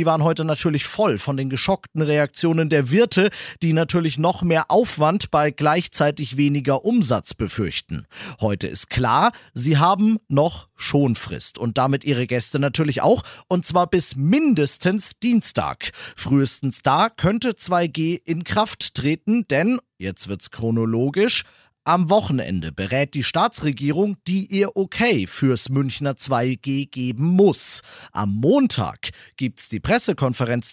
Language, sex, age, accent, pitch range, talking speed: German, male, 40-59, German, 135-190 Hz, 135 wpm